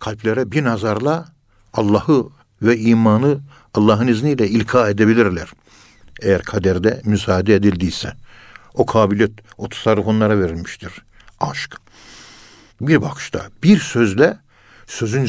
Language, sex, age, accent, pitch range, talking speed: Turkish, male, 60-79, native, 105-125 Hz, 100 wpm